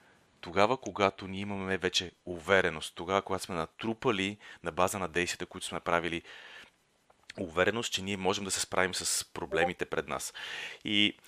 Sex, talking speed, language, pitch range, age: male, 155 wpm, Bulgarian, 95-120 Hz, 30-49